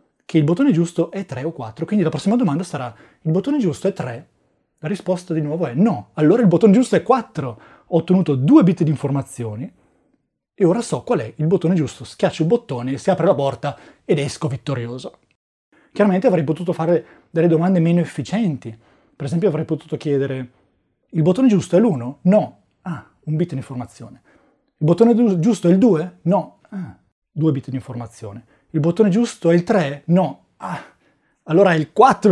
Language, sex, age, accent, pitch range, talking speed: Italian, male, 30-49, native, 140-185 Hz, 190 wpm